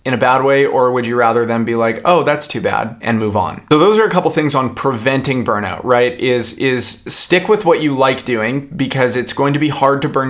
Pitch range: 115-140 Hz